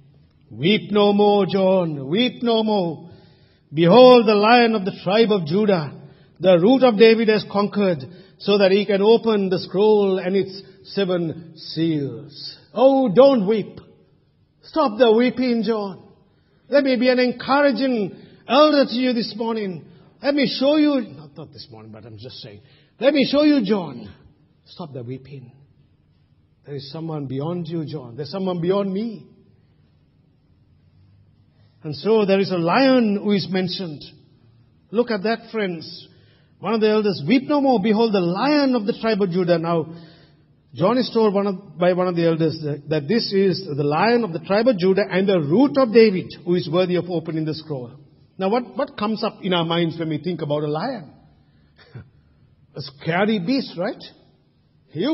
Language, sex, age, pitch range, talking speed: English, male, 50-69, 155-220 Hz, 170 wpm